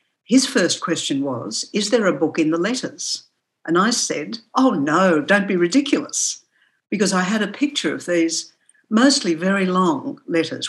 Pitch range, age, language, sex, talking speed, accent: 155-215 Hz, 60-79, English, female, 170 wpm, Australian